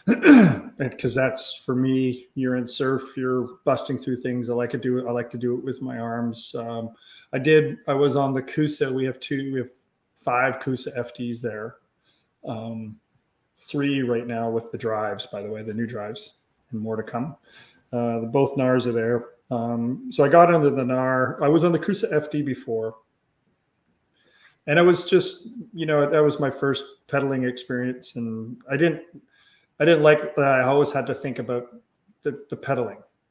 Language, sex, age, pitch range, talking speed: English, male, 30-49, 120-140 Hz, 190 wpm